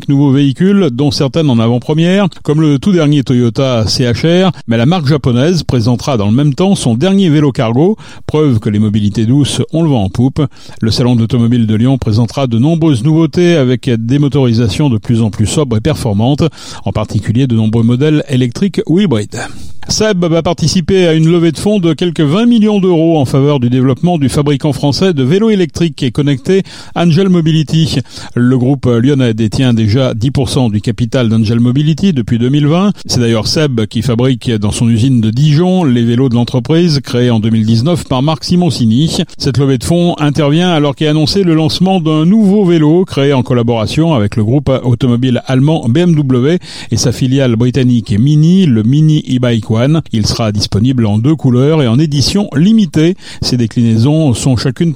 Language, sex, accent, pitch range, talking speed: French, male, French, 120-160 Hz, 180 wpm